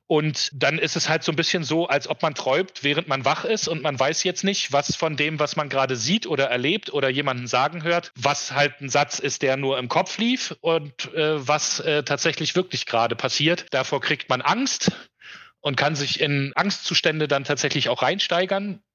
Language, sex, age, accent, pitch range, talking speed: German, male, 40-59, German, 125-155 Hz, 210 wpm